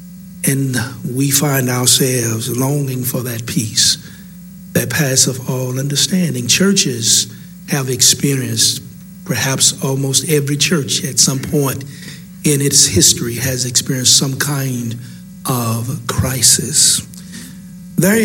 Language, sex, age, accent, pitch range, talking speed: English, male, 50-69, American, 130-180 Hz, 110 wpm